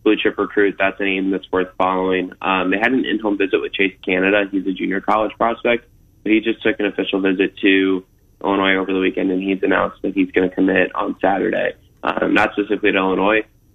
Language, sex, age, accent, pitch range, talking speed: English, male, 20-39, American, 95-110 Hz, 215 wpm